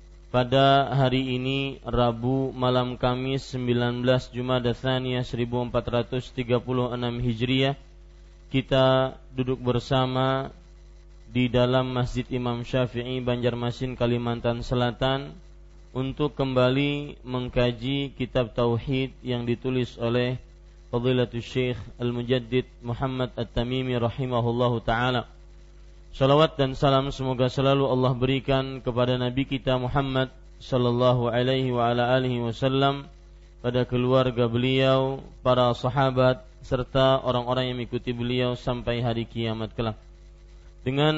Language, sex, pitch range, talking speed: Malay, male, 120-130 Hz, 95 wpm